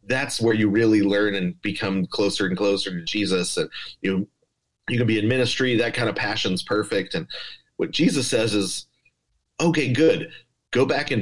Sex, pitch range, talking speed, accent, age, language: male, 105-140 Hz, 180 wpm, American, 30-49, English